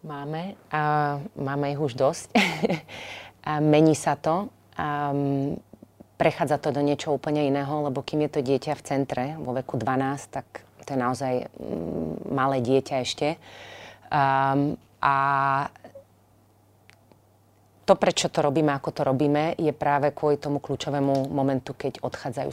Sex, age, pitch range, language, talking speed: female, 30-49, 130-150 Hz, Slovak, 130 wpm